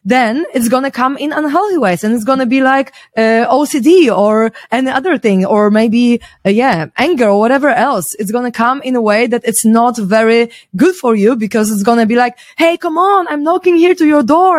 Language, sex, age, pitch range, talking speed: English, female, 20-39, 210-265 Hz, 235 wpm